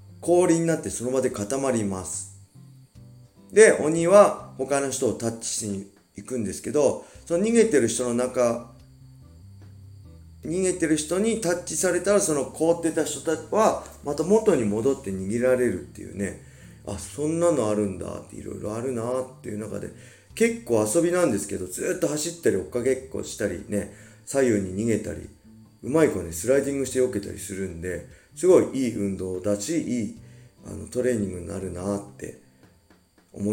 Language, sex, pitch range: Japanese, male, 100-130 Hz